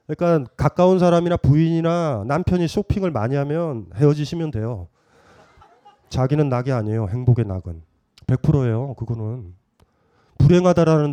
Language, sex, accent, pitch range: Korean, male, native, 115-175 Hz